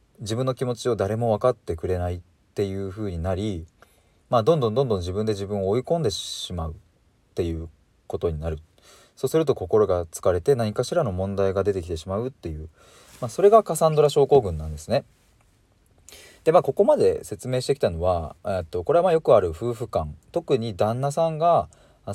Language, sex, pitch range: Japanese, male, 85-125 Hz